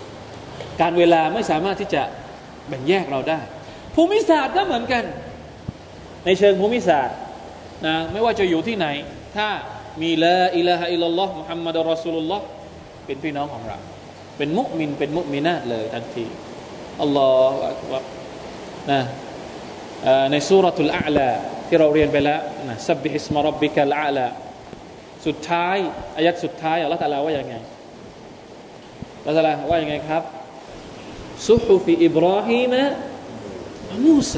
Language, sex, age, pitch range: Thai, male, 20-39, 155-210 Hz